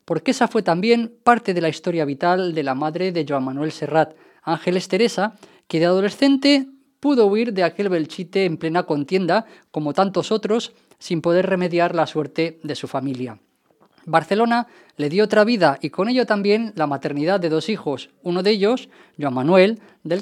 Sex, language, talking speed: female, English, 180 wpm